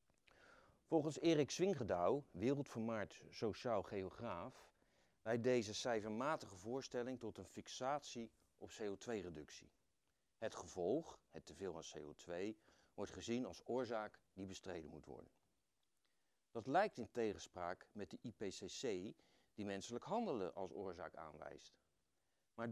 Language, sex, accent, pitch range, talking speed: Dutch, male, Dutch, 95-125 Hz, 115 wpm